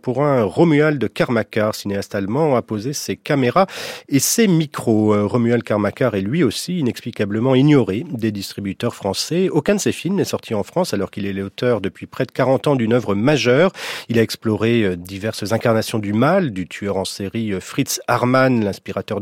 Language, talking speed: French, 180 wpm